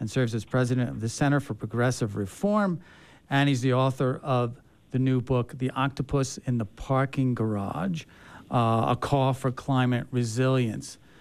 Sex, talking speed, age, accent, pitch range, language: male, 160 wpm, 50-69, American, 125-160 Hz, English